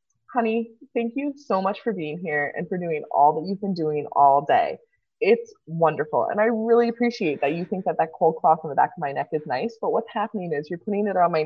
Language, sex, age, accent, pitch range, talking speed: English, female, 20-39, American, 165-235 Hz, 250 wpm